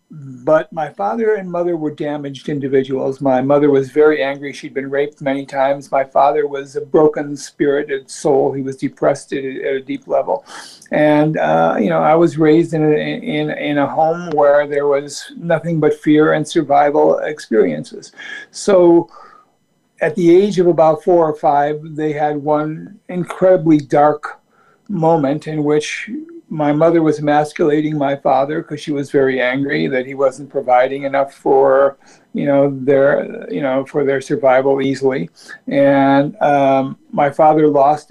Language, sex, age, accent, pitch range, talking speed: English, male, 60-79, American, 140-160 Hz, 160 wpm